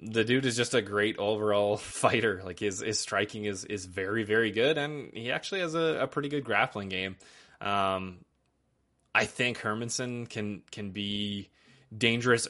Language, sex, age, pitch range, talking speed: English, male, 20-39, 100-120 Hz, 170 wpm